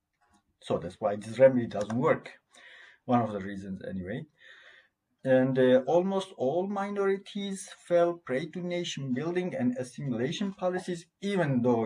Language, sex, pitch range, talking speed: Turkish, male, 105-135 Hz, 135 wpm